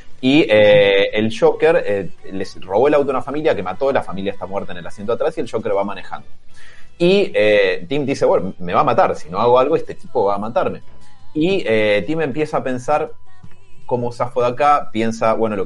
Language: Spanish